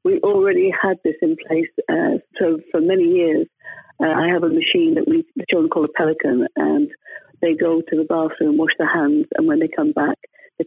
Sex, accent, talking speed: female, British, 215 wpm